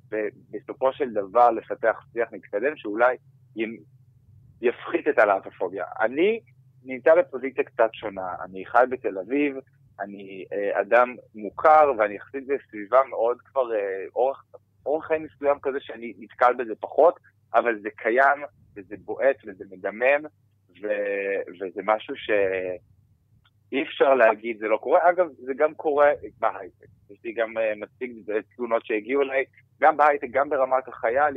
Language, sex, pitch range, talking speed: Hebrew, male, 105-135 Hz, 135 wpm